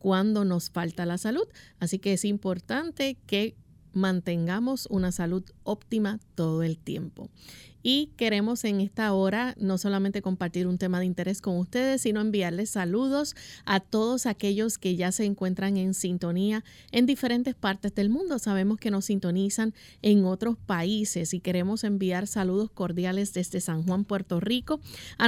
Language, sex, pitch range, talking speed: English, female, 180-225 Hz, 155 wpm